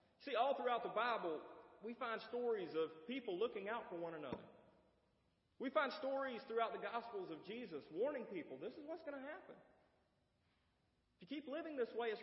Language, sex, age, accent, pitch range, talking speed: English, male, 40-59, American, 170-255 Hz, 185 wpm